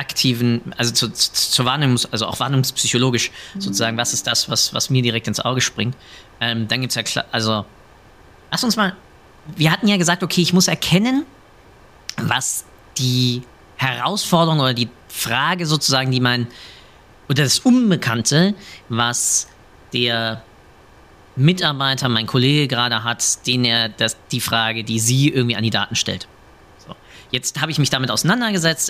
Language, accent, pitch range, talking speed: German, German, 115-150 Hz, 145 wpm